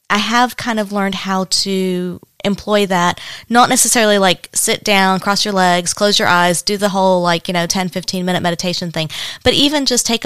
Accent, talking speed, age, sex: American, 205 wpm, 20-39, female